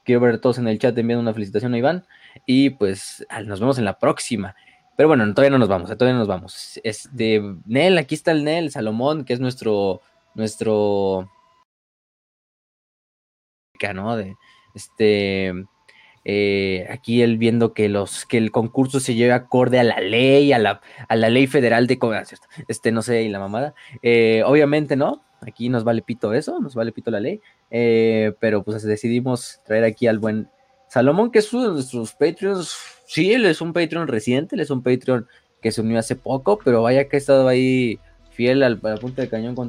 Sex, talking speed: male, 195 wpm